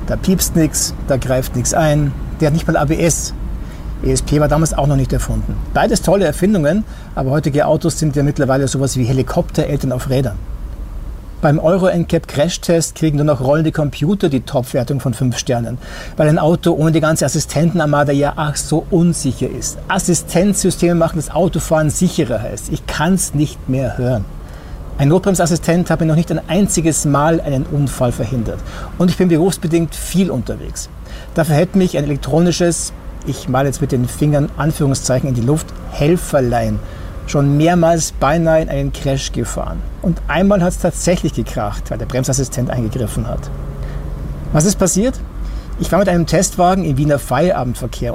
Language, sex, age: German, male, 60-79